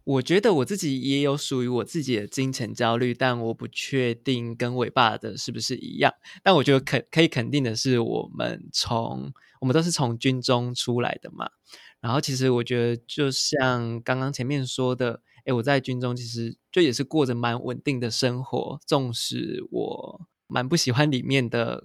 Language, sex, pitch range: Chinese, male, 120-140 Hz